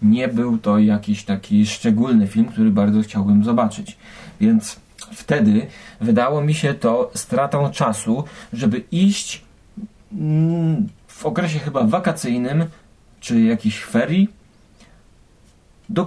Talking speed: 110 wpm